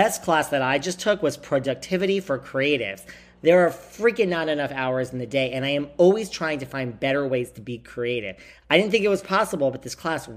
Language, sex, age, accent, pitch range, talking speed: English, male, 40-59, American, 125-175 Hz, 235 wpm